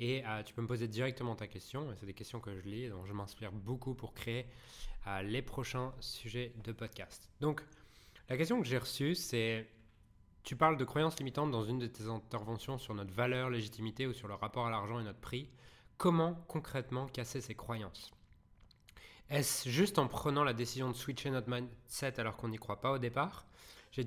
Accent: French